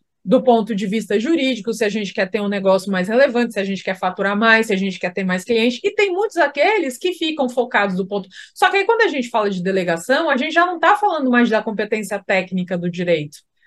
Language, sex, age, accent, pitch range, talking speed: Portuguese, female, 30-49, Brazilian, 200-320 Hz, 250 wpm